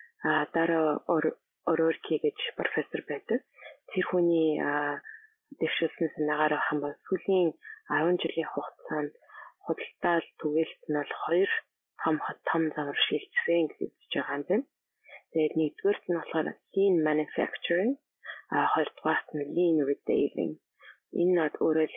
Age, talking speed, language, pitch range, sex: 30-49, 55 wpm, English, 150-180 Hz, female